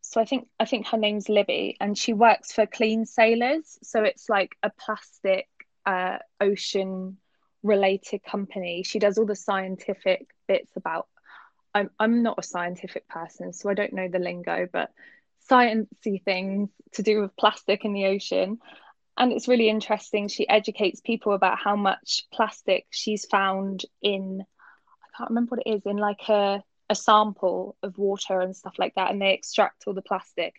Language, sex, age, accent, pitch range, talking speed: English, female, 10-29, British, 195-230 Hz, 175 wpm